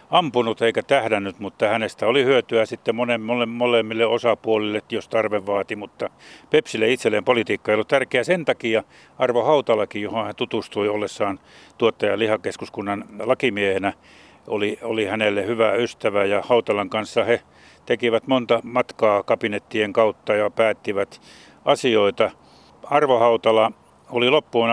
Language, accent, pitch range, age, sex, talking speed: Finnish, native, 105-115 Hz, 60-79, male, 130 wpm